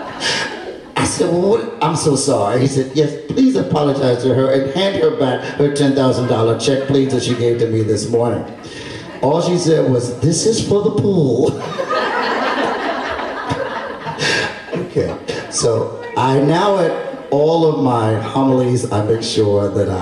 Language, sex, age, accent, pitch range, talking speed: English, male, 50-69, American, 115-140 Hz, 155 wpm